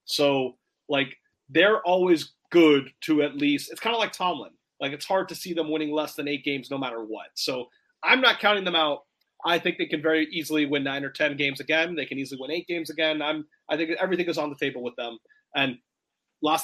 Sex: male